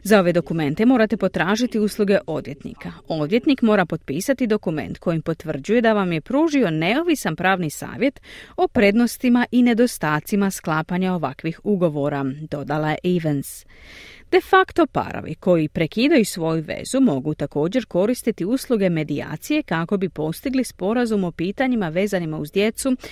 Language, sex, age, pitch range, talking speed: Croatian, female, 30-49, 160-250 Hz, 130 wpm